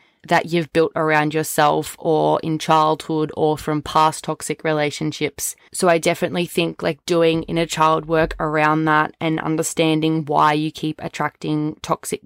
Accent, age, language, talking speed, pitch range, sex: Australian, 20-39, English, 150 wpm, 155-170 Hz, female